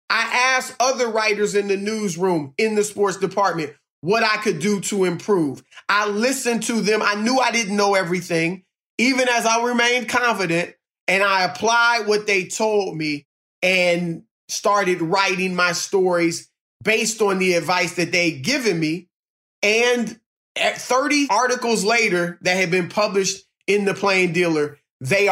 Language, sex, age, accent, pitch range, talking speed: English, male, 30-49, American, 180-225 Hz, 155 wpm